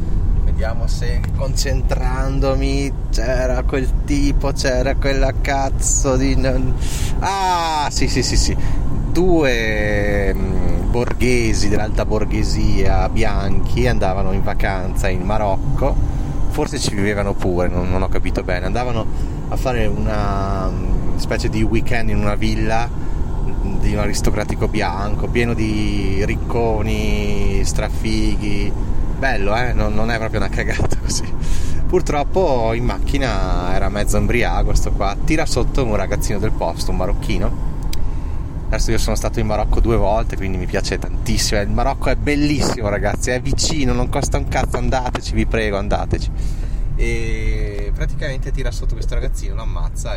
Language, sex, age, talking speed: Italian, male, 20-39, 135 wpm